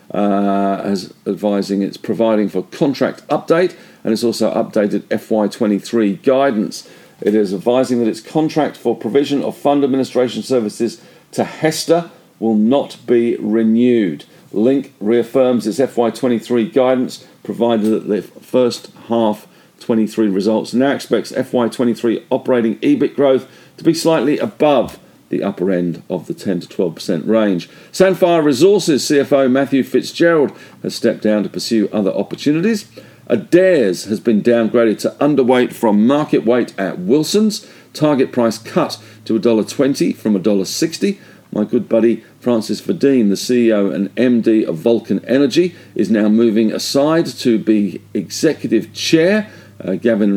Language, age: English, 50-69